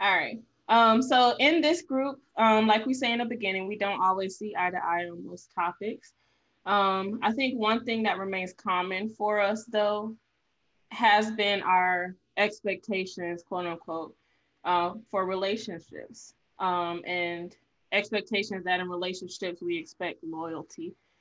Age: 20-39